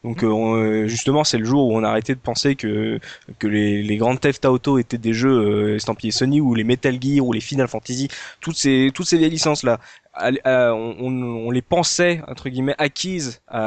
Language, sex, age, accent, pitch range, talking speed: French, male, 20-39, French, 115-155 Hz, 210 wpm